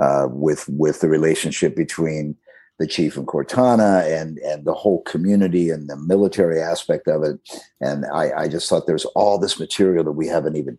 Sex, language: male, English